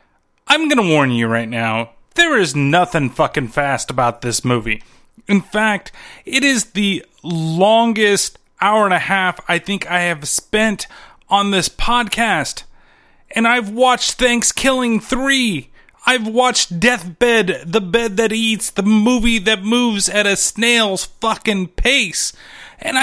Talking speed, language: 145 wpm, English